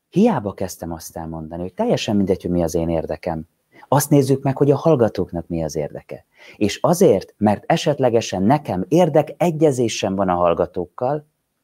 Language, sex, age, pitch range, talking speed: Hungarian, male, 30-49, 90-130 Hz, 155 wpm